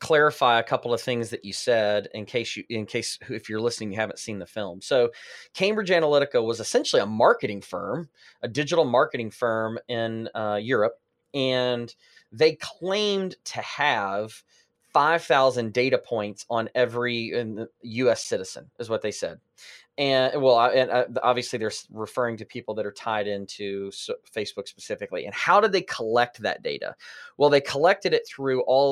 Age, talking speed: 30-49, 170 wpm